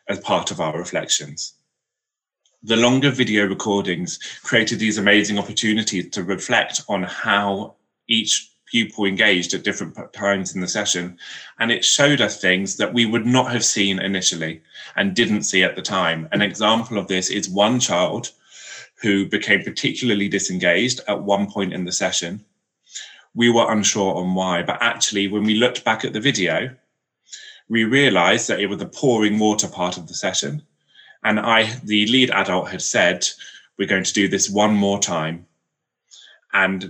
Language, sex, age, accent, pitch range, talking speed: English, male, 20-39, British, 95-110 Hz, 165 wpm